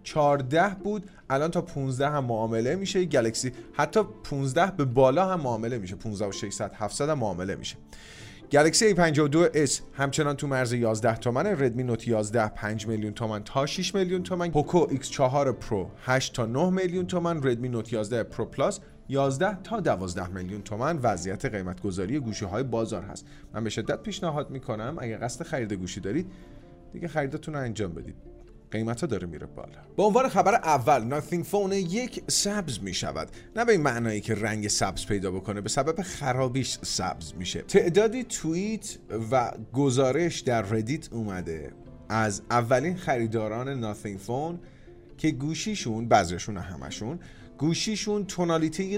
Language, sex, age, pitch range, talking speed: Persian, male, 30-49, 110-160 Hz, 155 wpm